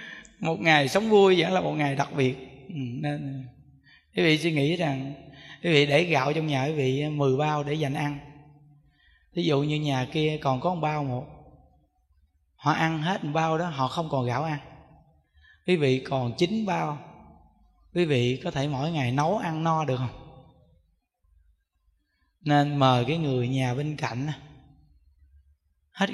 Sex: male